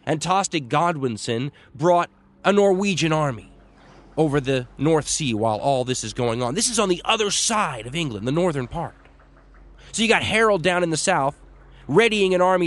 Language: English